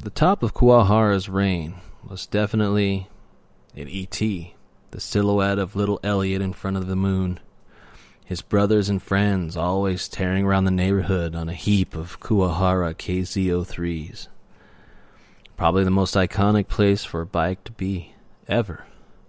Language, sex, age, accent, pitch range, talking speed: English, male, 30-49, American, 90-105 Hz, 140 wpm